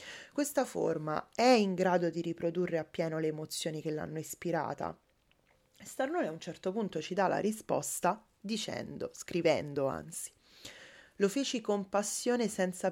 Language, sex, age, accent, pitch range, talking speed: Italian, female, 20-39, native, 170-210 Hz, 140 wpm